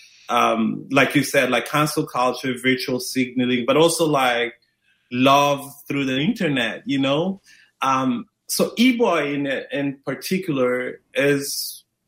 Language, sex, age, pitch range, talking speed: English, male, 30-49, 120-155 Hz, 125 wpm